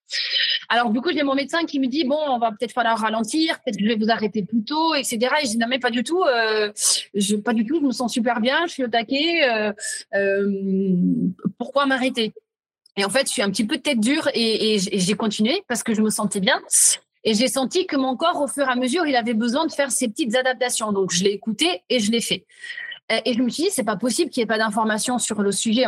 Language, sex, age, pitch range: French, female, 30-49, 220-280 Hz